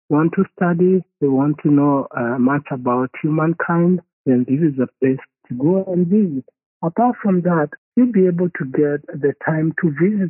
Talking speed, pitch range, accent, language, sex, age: 185 wpm, 140-185 Hz, Nigerian, English, male, 60-79